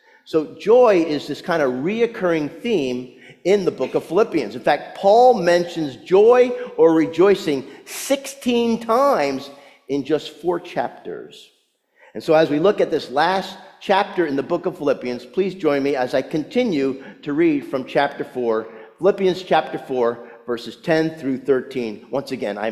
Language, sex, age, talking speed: English, male, 50-69, 160 wpm